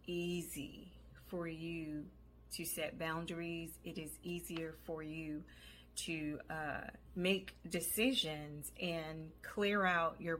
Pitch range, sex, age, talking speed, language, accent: 155-190 Hz, female, 30-49, 110 wpm, English, American